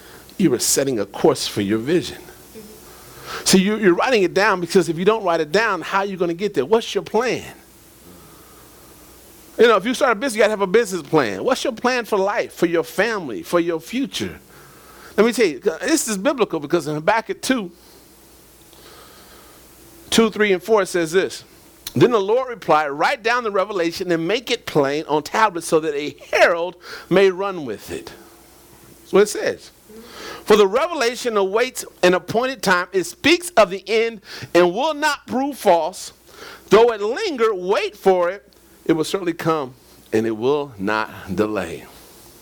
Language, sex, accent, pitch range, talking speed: English, male, American, 175-250 Hz, 185 wpm